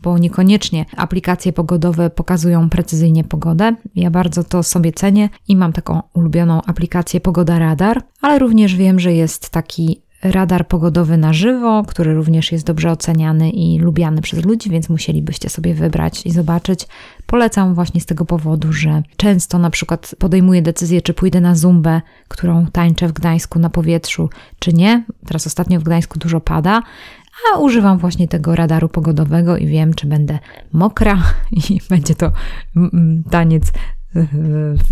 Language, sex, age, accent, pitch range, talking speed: Polish, female, 20-39, native, 160-180 Hz, 155 wpm